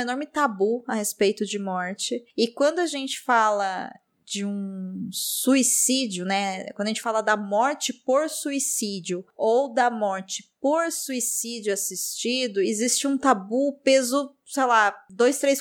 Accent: Brazilian